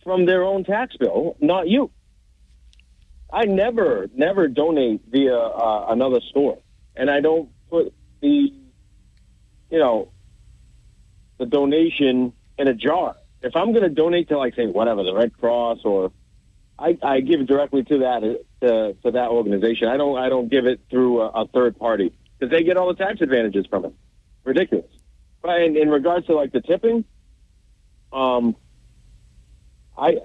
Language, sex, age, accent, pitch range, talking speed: English, male, 40-59, American, 115-160 Hz, 165 wpm